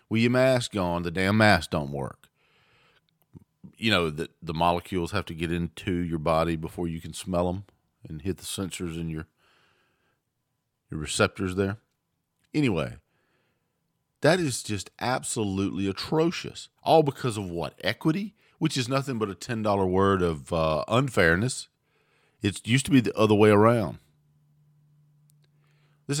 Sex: male